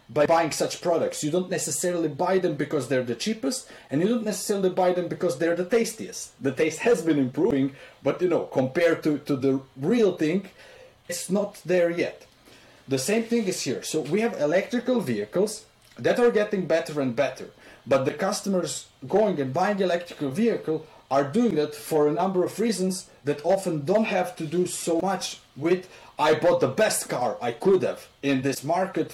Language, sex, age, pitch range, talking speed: English, male, 30-49, 140-190 Hz, 195 wpm